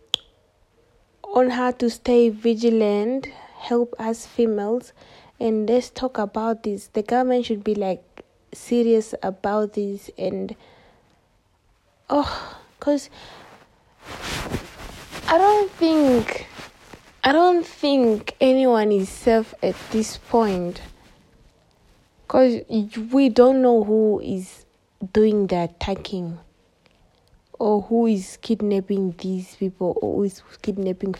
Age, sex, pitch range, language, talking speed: 20-39, female, 195-240 Hz, English, 105 wpm